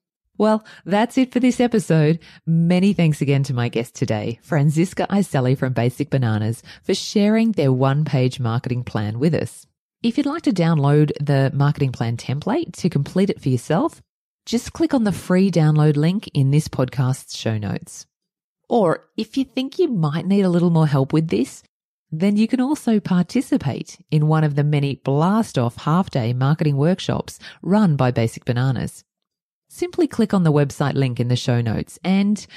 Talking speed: 175 wpm